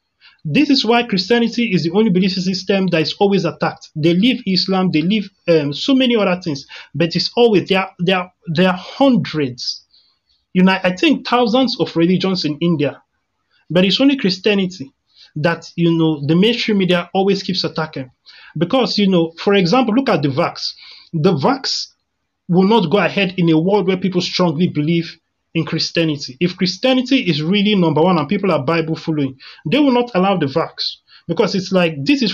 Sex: male